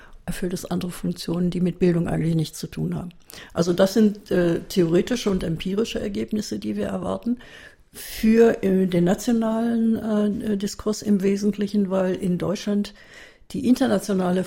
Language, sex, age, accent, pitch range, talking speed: German, female, 60-79, German, 175-205 Hz, 150 wpm